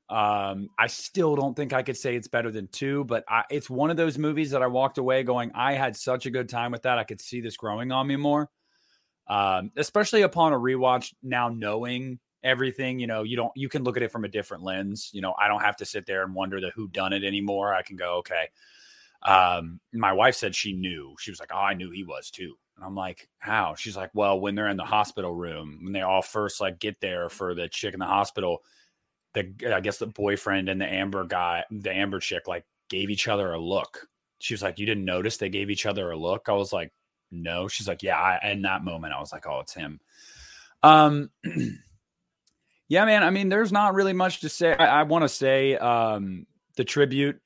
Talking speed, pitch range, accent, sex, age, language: 235 wpm, 100-130 Hz, American, male, 30-49, English